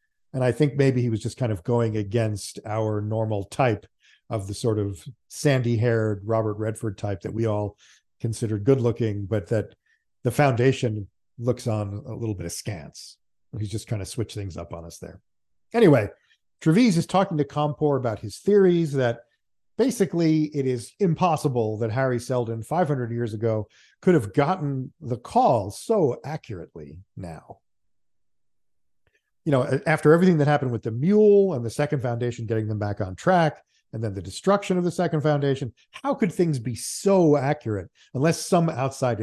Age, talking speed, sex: 50-69, 170 wpm, male